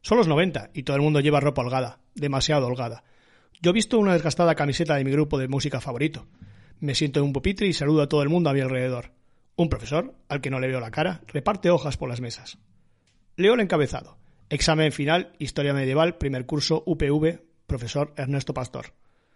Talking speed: 200 wpm